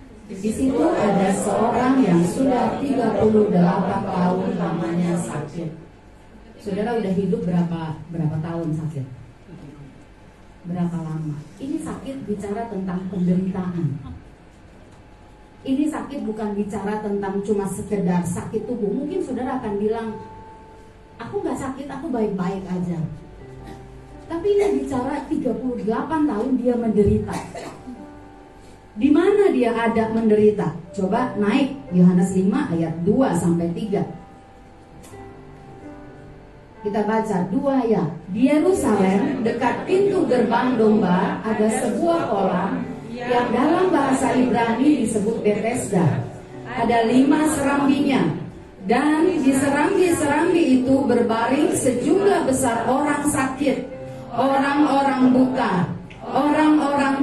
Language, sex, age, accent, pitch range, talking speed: Indonesian, female, 30-49, native, 180-265 Hz, 100 wpm